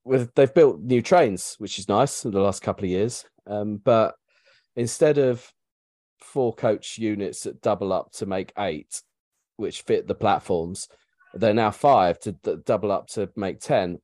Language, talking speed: English, 170 wpm